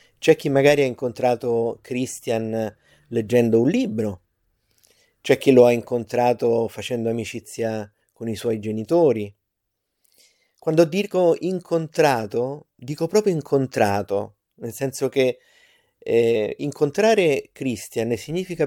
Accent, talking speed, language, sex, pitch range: native, 105 wpm, Italian, male, 115-150 Hz